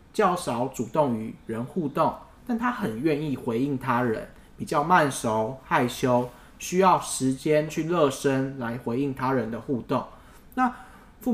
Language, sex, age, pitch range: Chinese, male, 20-39, 130-175 Hz